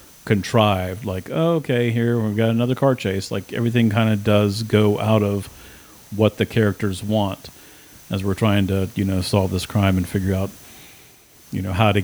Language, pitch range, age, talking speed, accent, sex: English, 100-115 Hz, 40-59, 190 wpm, American, male